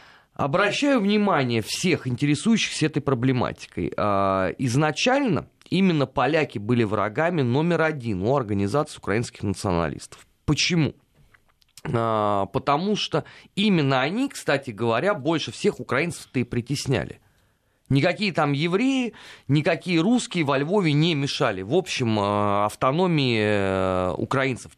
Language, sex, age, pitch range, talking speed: Russian, male, 30-49, 115-165 Hz, 100 wpm